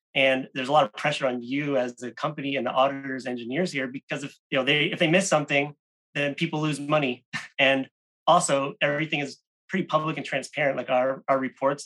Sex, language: male, English